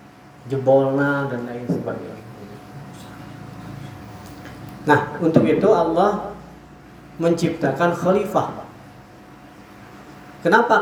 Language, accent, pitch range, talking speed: Indonesian, native, 140-175 Hz, 60 wpm